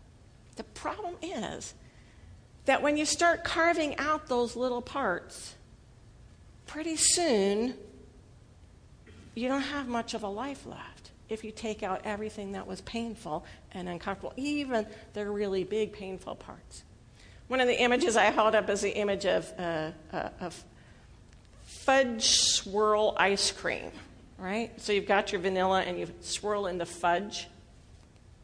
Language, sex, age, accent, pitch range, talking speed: English, female, 50-69, American, 185-260 Hz, 140 wpm